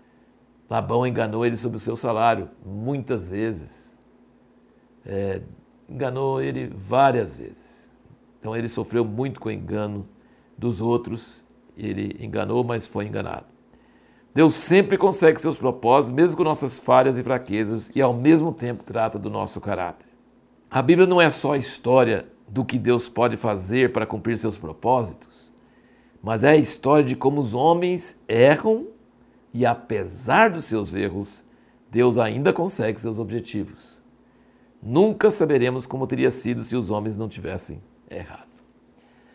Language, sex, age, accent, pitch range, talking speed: Portuguese, male, 60-79, Brazilian, 105-130 Hz, 140 wpm